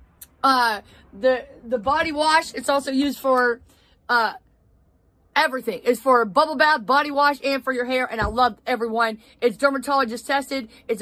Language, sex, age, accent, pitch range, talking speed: English, female, 30-49, American, 245-290 Hz, 160 wpm